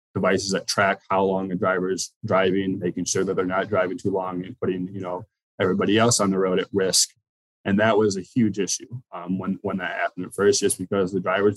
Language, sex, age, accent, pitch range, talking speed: English, male, 20-39, American, 95-105 Hz, 230 wpm